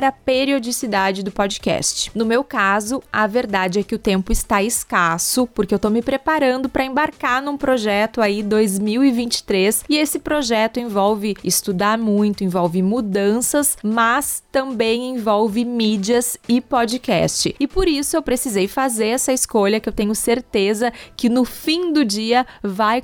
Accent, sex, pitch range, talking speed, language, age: Brazilian, female, 215-265 Hz, 150 wpm, Portuguese, 20-39